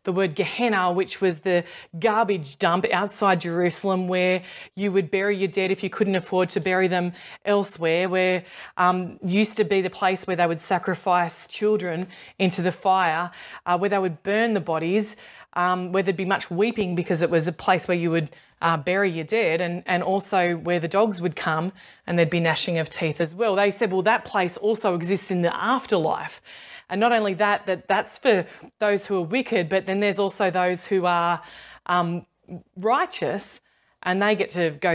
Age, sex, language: 20-39, female, English